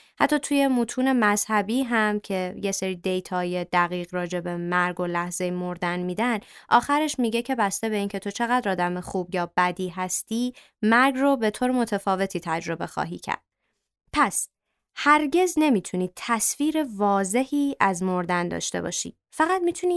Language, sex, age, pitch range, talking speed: Persian, female, 20-39, 180-245 Hz, 145 wpm